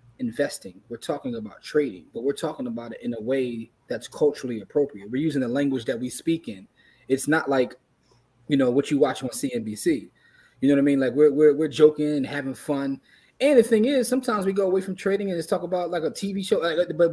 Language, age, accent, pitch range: English, 20-39, American, 125-185 Hz